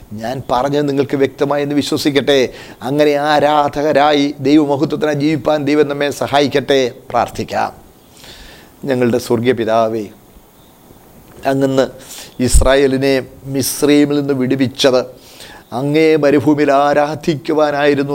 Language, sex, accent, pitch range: Malayalam, male, native, 135-155 Hz